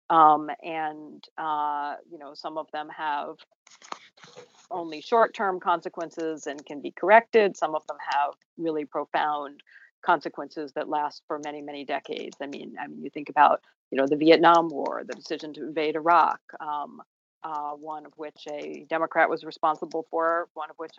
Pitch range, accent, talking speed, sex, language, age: 150-175 Hz, American, 170 wpm, female, English, 40-59